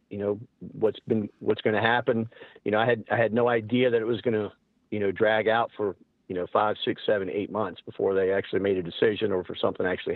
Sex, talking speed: male, 255 wpm